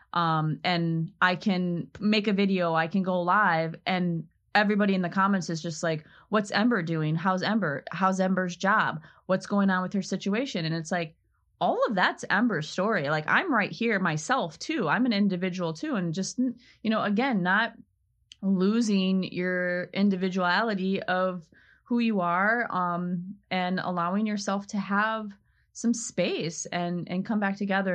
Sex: female